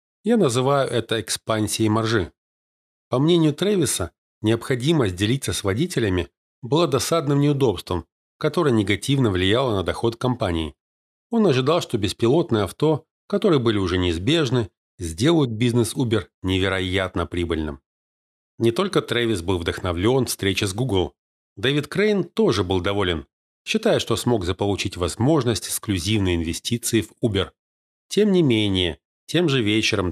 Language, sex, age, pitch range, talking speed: Russian, male, 40-59, 95-135 Hz, 130 wpm